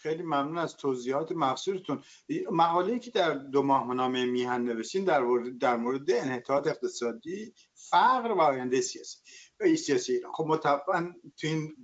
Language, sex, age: Persian, male, 60-79